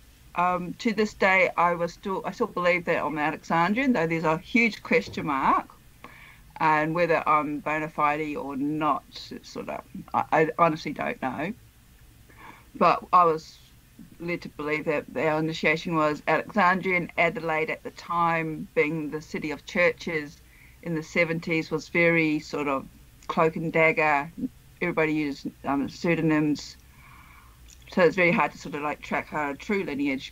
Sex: female